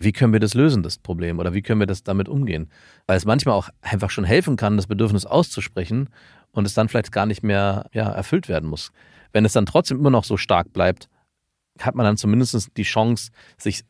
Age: 40-59